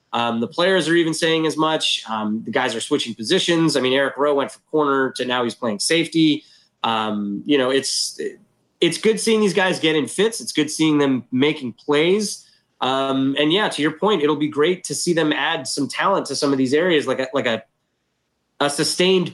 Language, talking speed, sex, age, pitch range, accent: English, 215 wpm, male, 20-39, 130-165 Hz, American